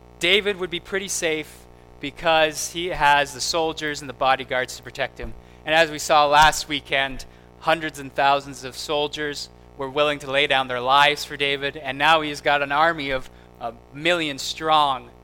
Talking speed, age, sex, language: 180 wpm, 20-39, male, English